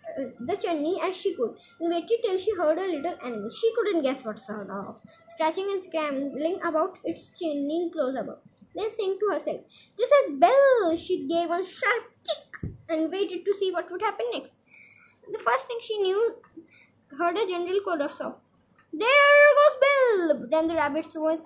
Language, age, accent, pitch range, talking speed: Hindi, 20-39, native, 285-410 Hz, 180 wpm